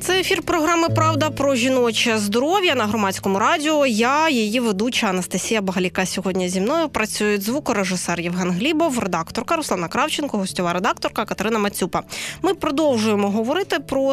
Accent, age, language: native, 20-39, Ukrainian